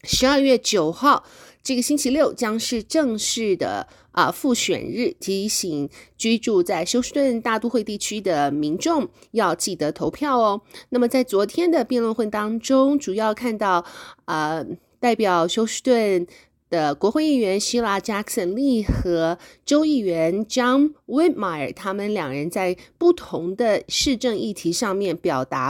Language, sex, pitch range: Chinese, female, 185-265 Hz